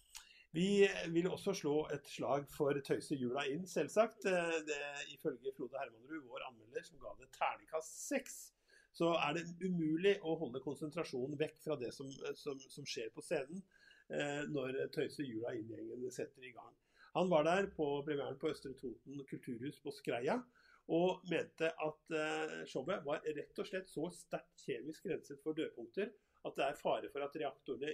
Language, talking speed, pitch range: English, 170 wpm, 145-200 Hz